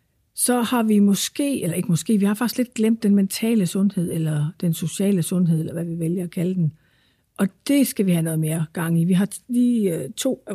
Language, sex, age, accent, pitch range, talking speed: Danish, female, 60-79, native, 170-210 Hz, 230 wpm